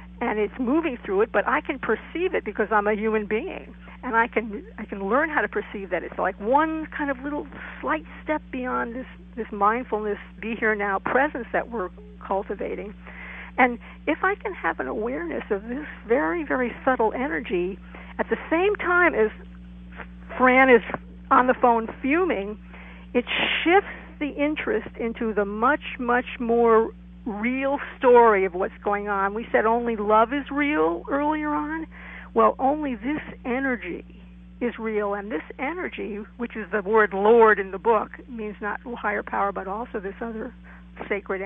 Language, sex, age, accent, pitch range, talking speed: English, female, 60-79, American, 205-275 Hz, 170 wpm